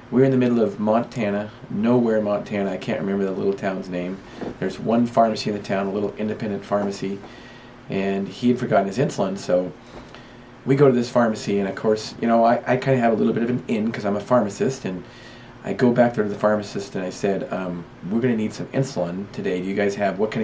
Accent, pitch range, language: American, 100-120 Hz, English